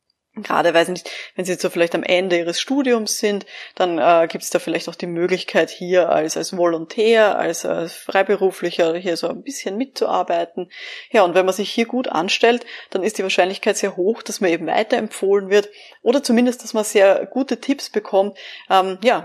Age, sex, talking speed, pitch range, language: 20-39, female, 190 wpm, 175-220 Hz, German